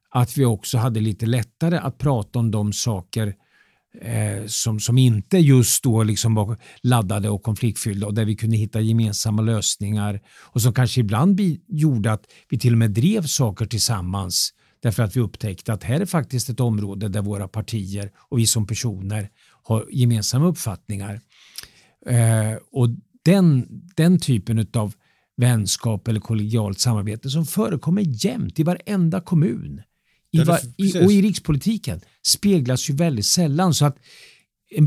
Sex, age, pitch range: male, 50-69, 110-150 Hz